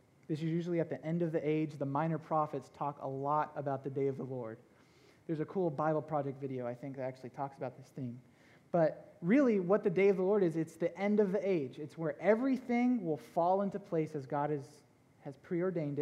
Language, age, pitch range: English, 20-39, 140-185 Hz